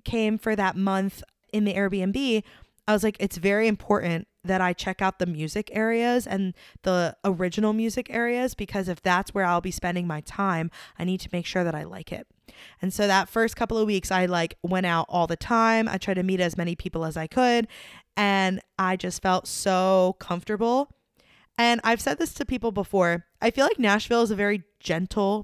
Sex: female